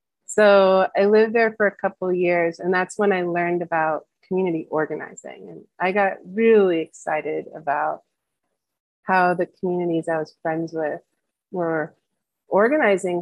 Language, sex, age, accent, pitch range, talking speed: English, female, 30-49, American, 170-200 Hz, 145 wpm